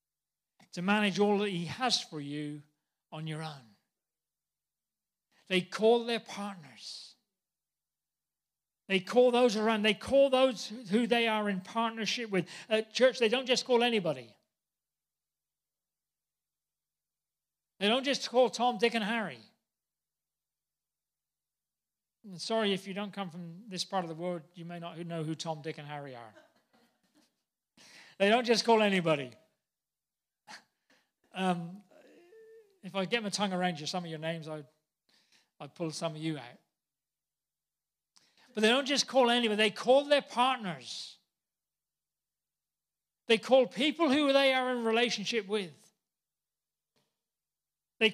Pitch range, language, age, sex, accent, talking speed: 180-250 Hz, English, 40-59, male, British, 135 wpm